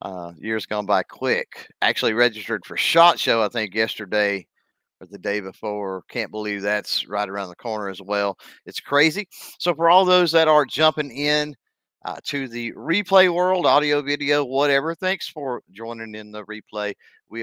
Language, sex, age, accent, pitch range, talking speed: English, male, 40-59, American, 105-140 Hz, 175 wpm